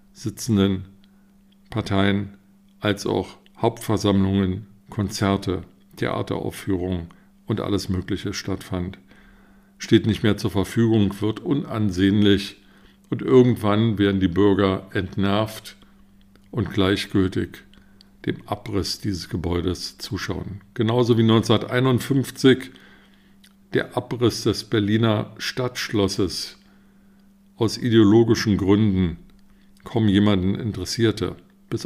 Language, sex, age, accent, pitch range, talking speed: German, male, 50-69, German, 100-140 Hz, 85 wpm